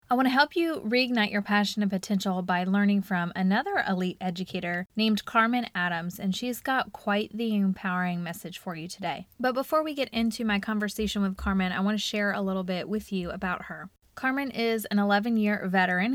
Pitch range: 185-215 Hz